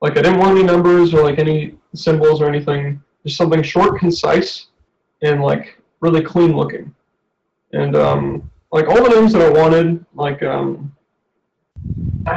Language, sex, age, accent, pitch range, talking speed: English, male, 20-39, American, 150-190 Hz, 160 wpm